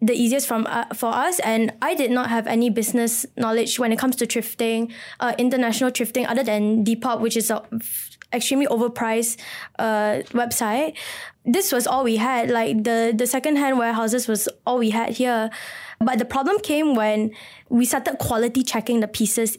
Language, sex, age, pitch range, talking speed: English, female, 10-29, 225-260 Hz, 180 wpm